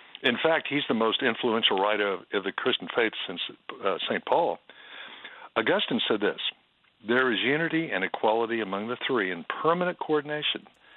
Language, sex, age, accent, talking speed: English, male, 60-79, American, 165 wpm